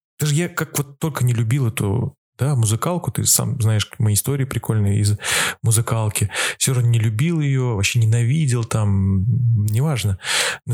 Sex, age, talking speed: male, 20-39, 155 wpm